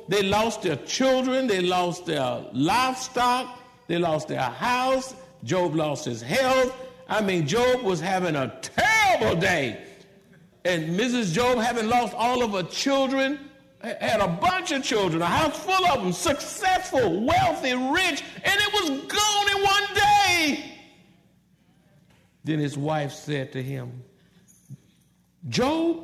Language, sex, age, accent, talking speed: English, male, 60-79, American, 140 wpm